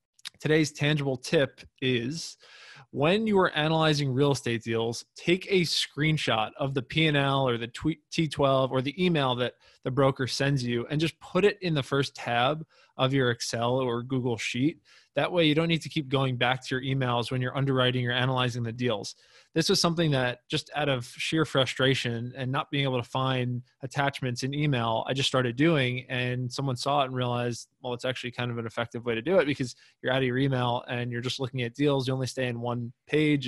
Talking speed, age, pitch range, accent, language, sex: 210 wpm, 20-39, 125-145 Hz, American, English, male